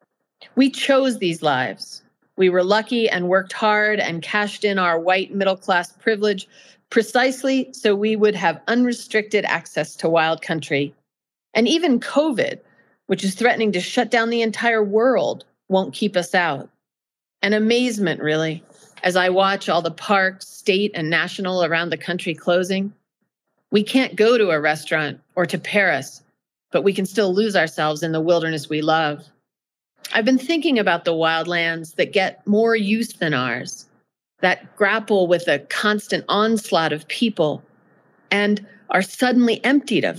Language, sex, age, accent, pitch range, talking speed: English, female, 40-59, American, 170-225 Hz, 155 wpm